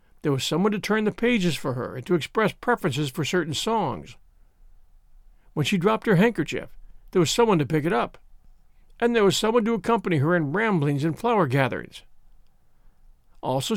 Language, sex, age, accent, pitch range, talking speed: English, male, 60-79, American, 150-210 Hz, 180 wpm